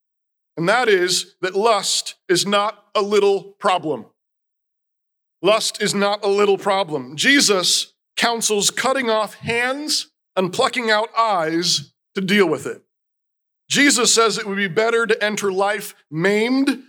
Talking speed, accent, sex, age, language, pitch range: 140 wpm, American, male, 40-59, English, 195-235 Hz